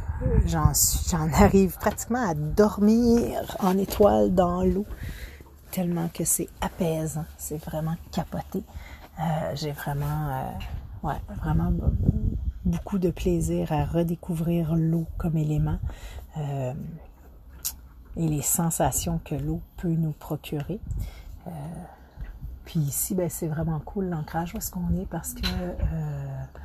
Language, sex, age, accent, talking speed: French, female, 40-59, Canadian, 125 wpm